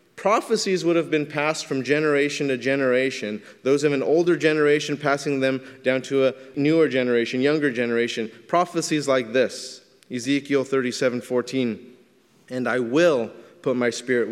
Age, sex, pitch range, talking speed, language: 30-49, male, 120-145 Hz, 145 wpm, English